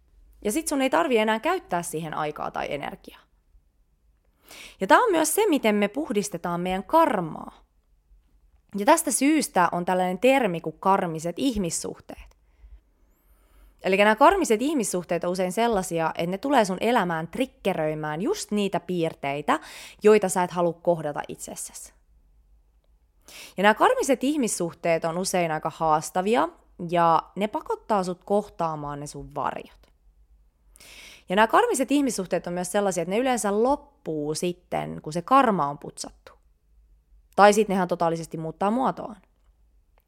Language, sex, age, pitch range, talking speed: Finnish, female, 20-39, 155-220 Hz, 135 wpm